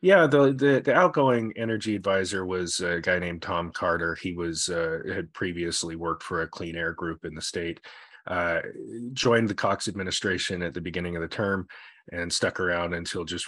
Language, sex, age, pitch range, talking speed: English, male, 30-49, 85-110 Hz, 190 wpm